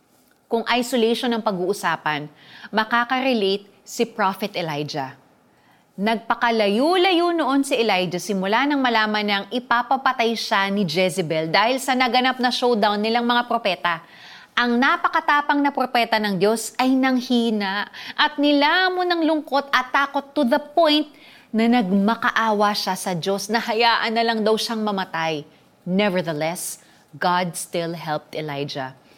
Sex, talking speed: female, 130 wpm